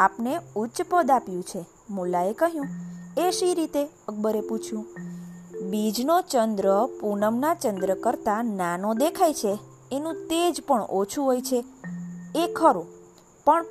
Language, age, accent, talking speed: Gujarati, 20-39, native, 125 wpm